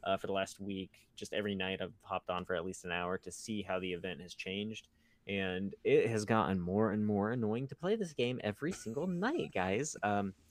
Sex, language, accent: male, English, American